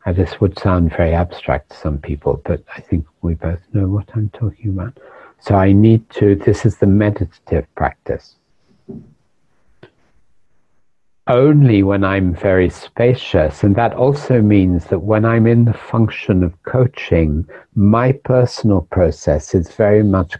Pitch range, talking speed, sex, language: 80-105 Hz, 145 wpm, male, English